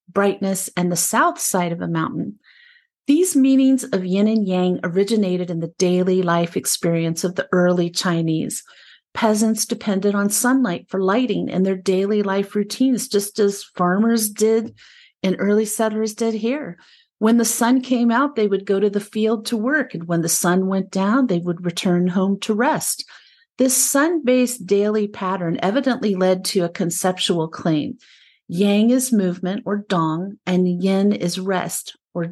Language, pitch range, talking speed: English, 185-235 Hz, 165 wpm